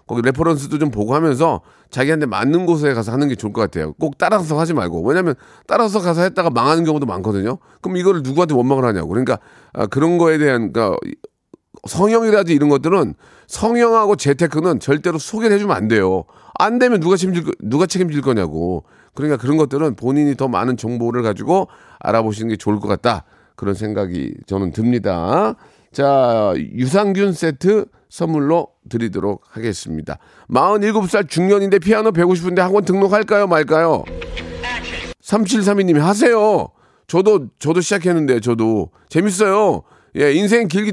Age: 40-59